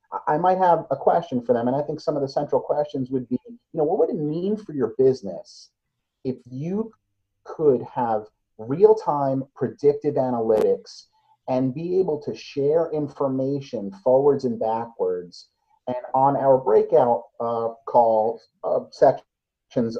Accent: American